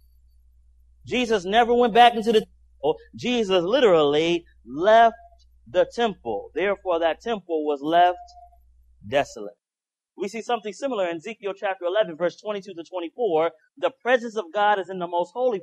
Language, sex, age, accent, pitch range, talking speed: English, male, 30-49, American, 165-230 Hz, 150 wpm